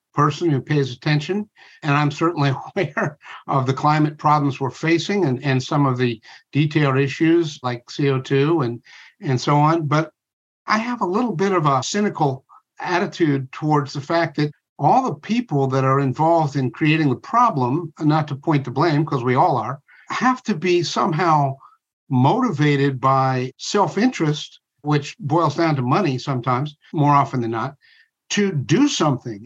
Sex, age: male, 60-79